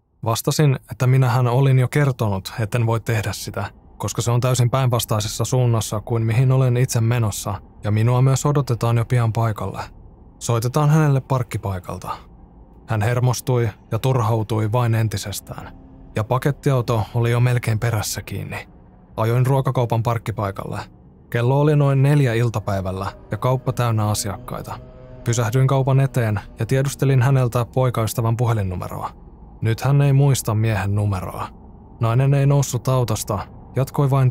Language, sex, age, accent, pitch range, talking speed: Finnish, male, 20-39, native, 105-130 Hz, 135 wpm